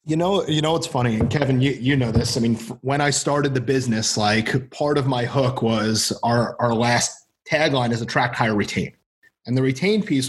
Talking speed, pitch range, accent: 220 wpm, 120-150 Hz, American